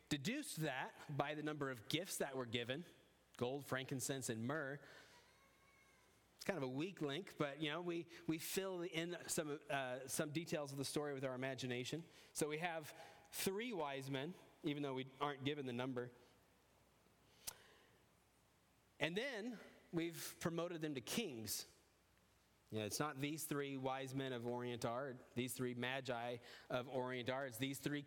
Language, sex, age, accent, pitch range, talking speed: English, male, 30-49, American, 125-155 Hz, 165 wpm